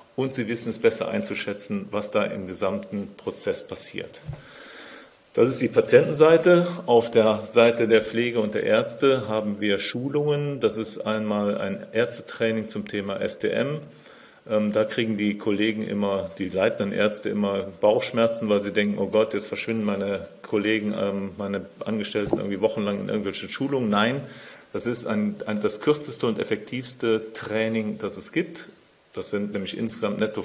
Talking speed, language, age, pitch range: 155 wpm, German, 40-59, 105-115 Hz